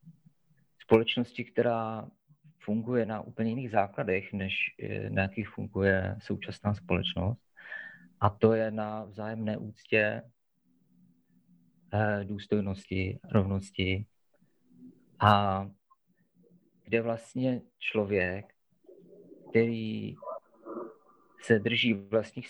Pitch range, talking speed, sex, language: 100-125 Hz, 75 wpm, male, Czech